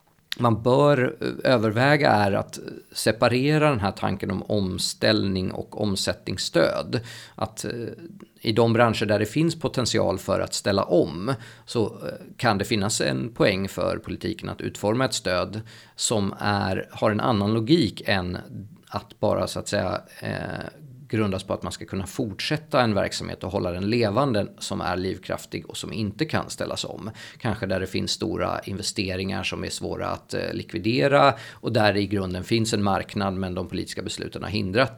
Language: Swedish